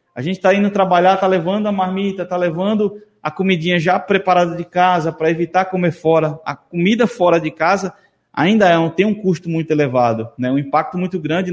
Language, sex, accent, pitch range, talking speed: Portuguese, male, Brazilian, 160-205 Hz, 205 wpm